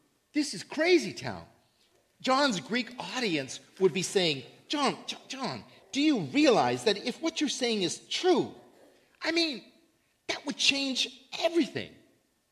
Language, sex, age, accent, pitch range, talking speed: English, male, 40-59, American, 210-315 Hz, 135 wpm